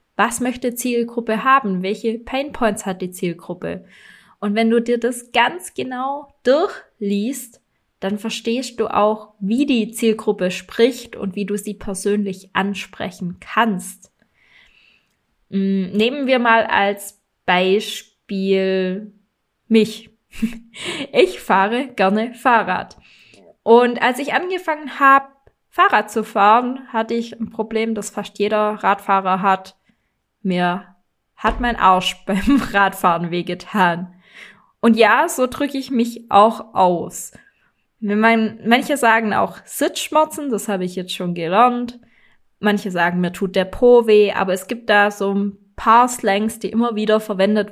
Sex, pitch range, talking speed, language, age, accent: female, 190-235 Hz, 130 wpm, German, 20-39, German